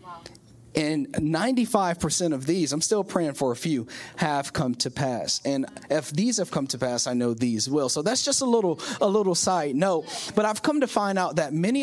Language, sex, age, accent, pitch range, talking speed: English, male, 30-49, American, 145-200 Hz, 215 wpm